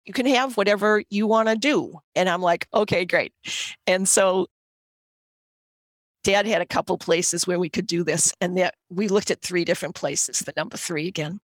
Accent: American